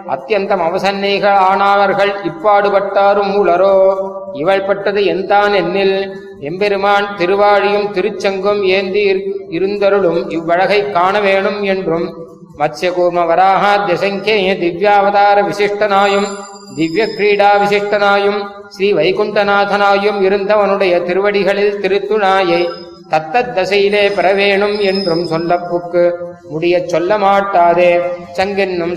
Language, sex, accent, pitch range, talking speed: Tamil, male, native, 175-200 Hz, 80 wpm